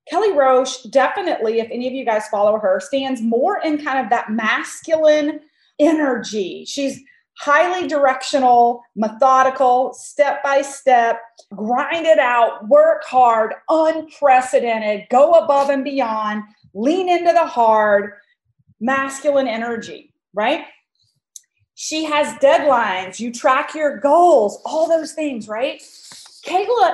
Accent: American